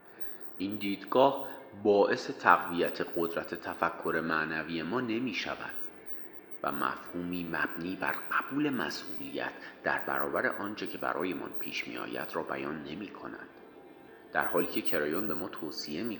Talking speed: 135 wpm